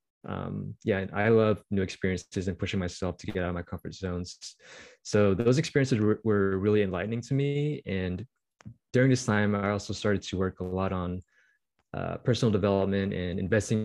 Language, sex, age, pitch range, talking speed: English, male, 20-39, 95-110 Hz, 185 wpm